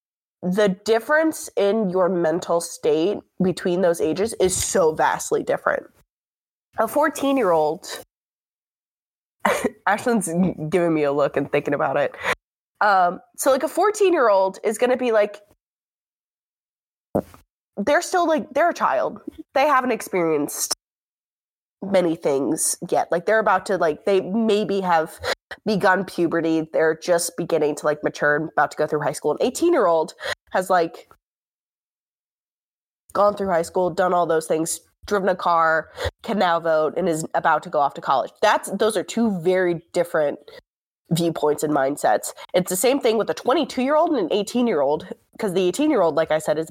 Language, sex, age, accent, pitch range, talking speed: English, female, 20-39, American, 165-235 Hz, 165 wpm